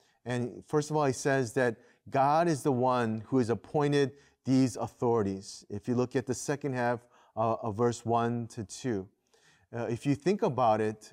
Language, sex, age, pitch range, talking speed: English, male, 30-49, 115-140 Hz, 180 wpm